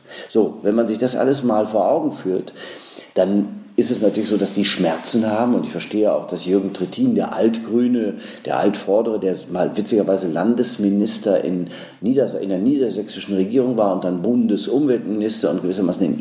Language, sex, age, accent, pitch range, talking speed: German, male, 50-69, German, 95-115 Hz, 170 wpm